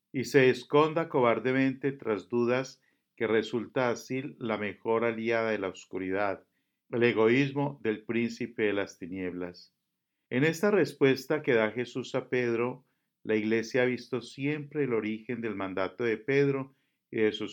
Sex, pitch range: male, 110-140 Hz